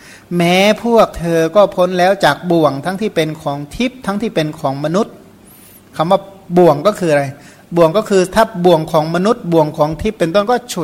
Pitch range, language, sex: 155-185 Hz, Thai, male